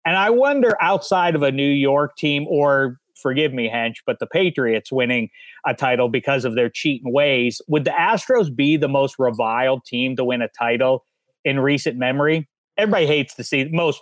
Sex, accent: male, American